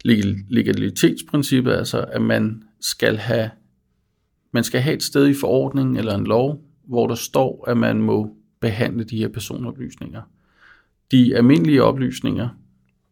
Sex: male